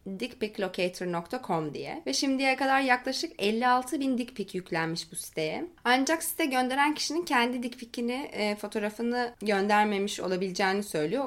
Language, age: Turkish, 20-39